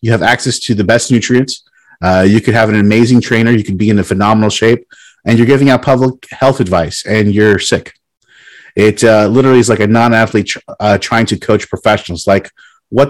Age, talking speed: 30-49, 200 wpm